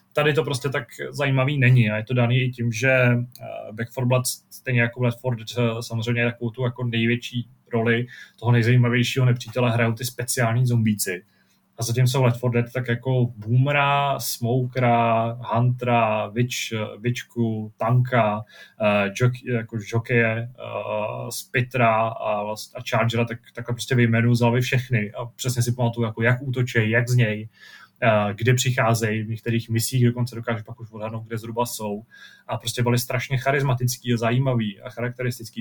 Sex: male